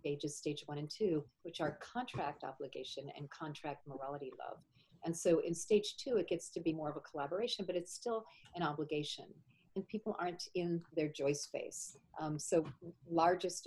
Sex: female